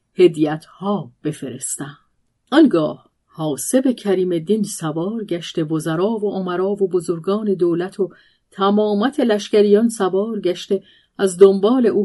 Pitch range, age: 165-215 Hz, 40-59